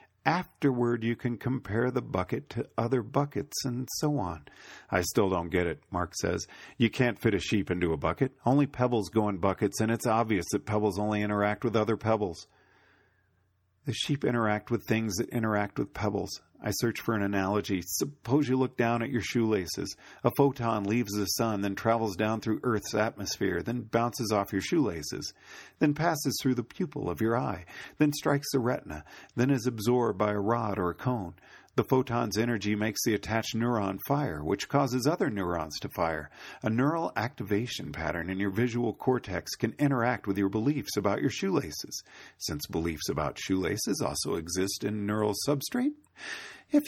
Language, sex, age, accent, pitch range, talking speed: English, male, 40-59, American, 100-130 Hz, 180 wpm